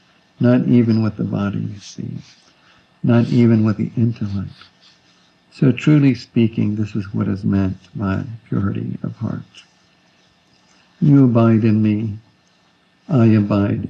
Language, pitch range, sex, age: English, 105-120 Hz, male, 60-79